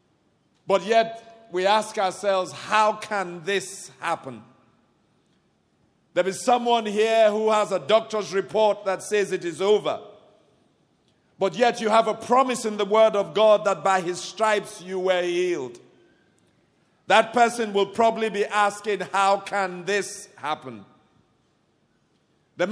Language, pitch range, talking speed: English, 190-230 Hz, 135 wpm